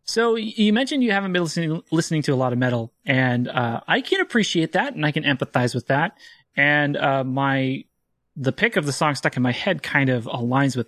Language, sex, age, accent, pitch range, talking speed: English, male, 30-49, American, 130-170 Hz, 225 wpm